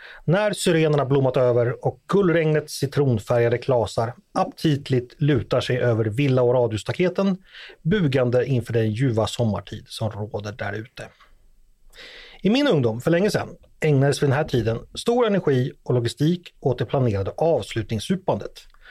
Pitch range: 120-175 Hz